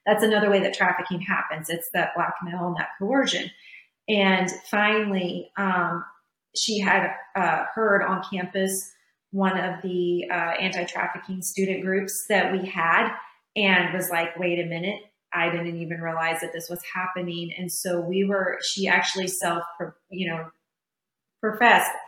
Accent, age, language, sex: American, 30-49, English, female